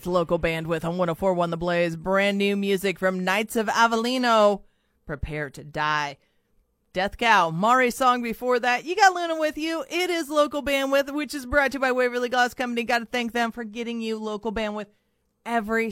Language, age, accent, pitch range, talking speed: English, 30-49, American, 205-255 Hz, 190 wpm